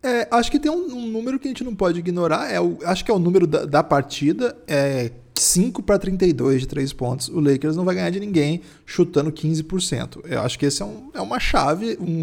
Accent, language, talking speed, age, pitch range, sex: Brazilian, Portuguese, 240 wpm, 20-39, 145-210 Hz, male